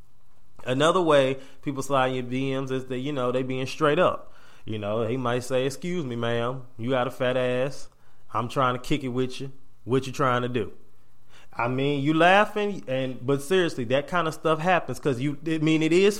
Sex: male